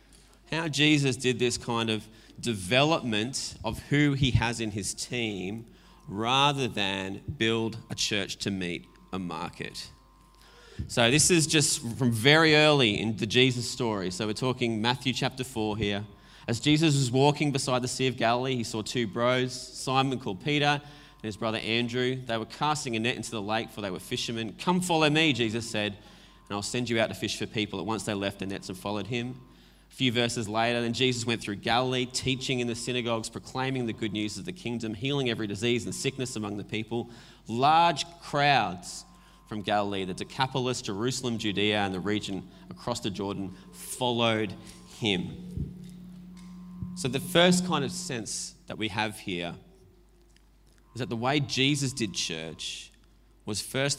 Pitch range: 105-130 Hz